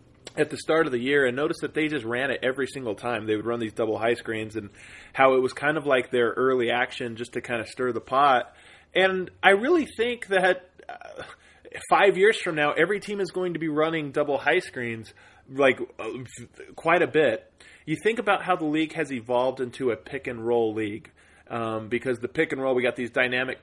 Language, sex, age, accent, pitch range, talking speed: English, male, 20-39, American, 120-155 Hz, 220 wpm